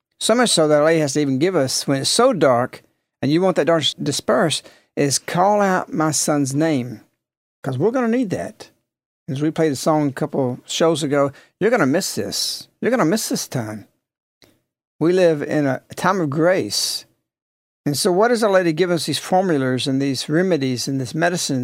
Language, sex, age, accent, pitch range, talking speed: English, male, 60-79, American, 145-195 Hz, 215 wpm